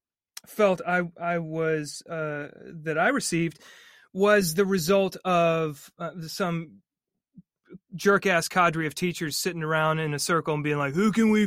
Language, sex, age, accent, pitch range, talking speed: English, male, 30-49, American, 165-200 Hz, 155 wpm